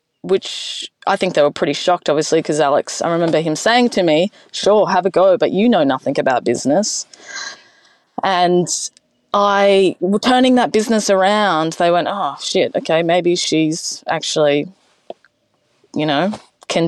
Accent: Australian